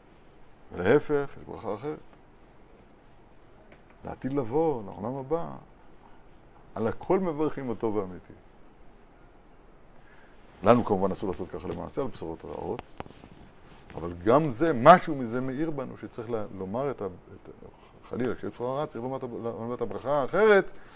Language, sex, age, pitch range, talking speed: Hebrew, male, 60-79, 115-160 Hz, 100 wpm